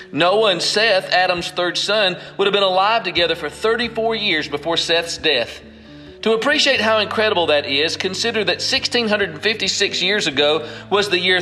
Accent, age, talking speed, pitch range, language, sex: American, 40-59, 165 wpm, 155-205 Hz, English, male